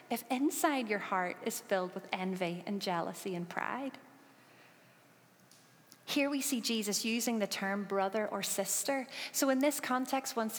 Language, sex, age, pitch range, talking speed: English, female, 30-49, 210-275 Hz, 155 wpm